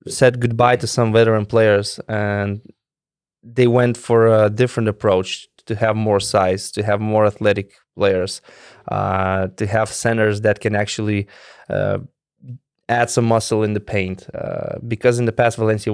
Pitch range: 110-130 Hz